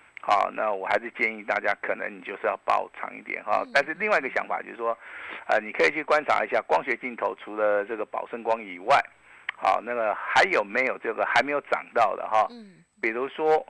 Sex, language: male, Chinese